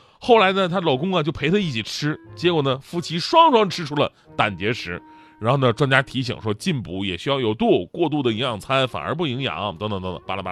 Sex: male